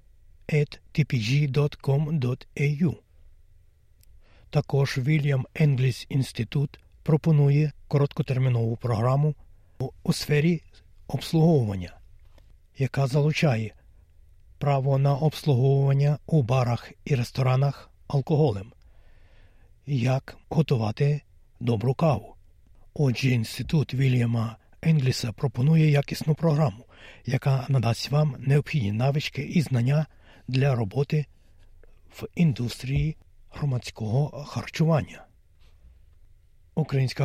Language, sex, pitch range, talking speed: Ukrainian, male, 100-150 Hz, 70 wpm